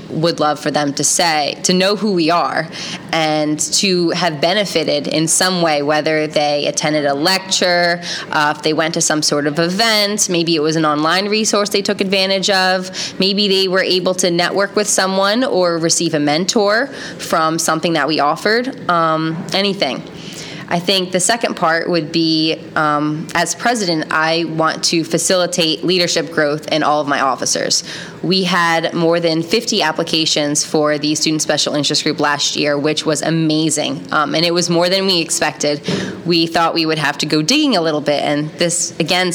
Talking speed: 185 wpm